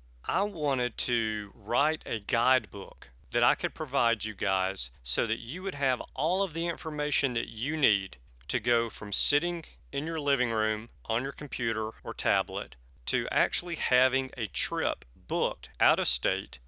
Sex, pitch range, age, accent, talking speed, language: male, 105-140 Hz, 40-59, American, 165 wpm, English